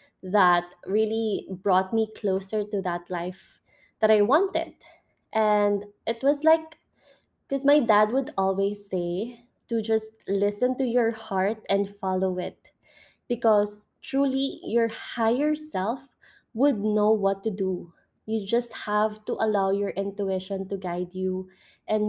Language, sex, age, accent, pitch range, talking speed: English, female, 20-39, Filipino, 200-250 Hz, 140 wpm